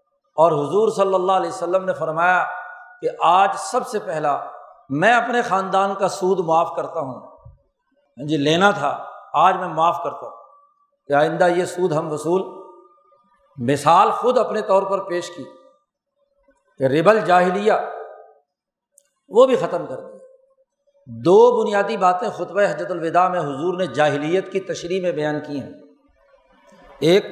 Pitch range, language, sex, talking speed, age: 175-235 Hz, Urdu, male, 145 wpm, 60-79